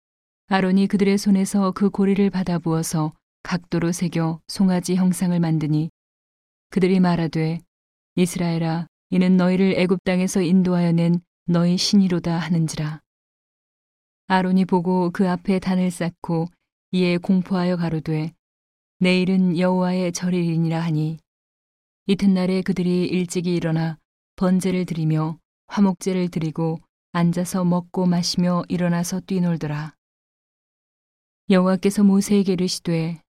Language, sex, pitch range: Korean, female, 165-185 Hz